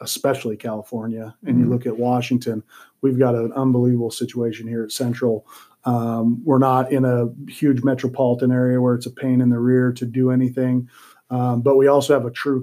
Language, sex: English, male